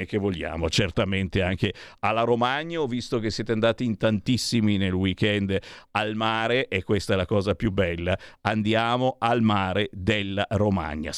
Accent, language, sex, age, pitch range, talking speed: native, Italian, male, 50-69, 105-145 Hz, 155 wpm